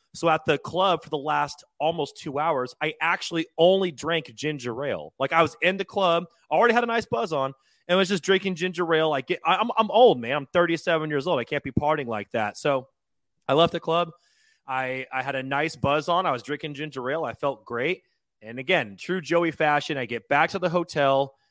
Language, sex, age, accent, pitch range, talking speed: English, male, 30-49, American, 135-170 Hz, 225 wpm